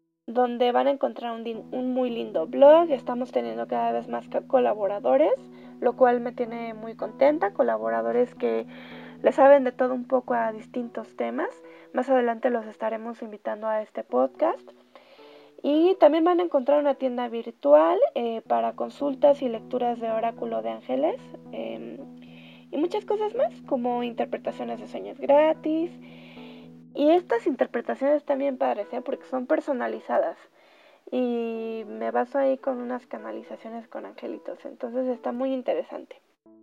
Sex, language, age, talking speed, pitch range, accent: female, Spanish, 20-39, 145 wpm, 215-285 Hz, Mexican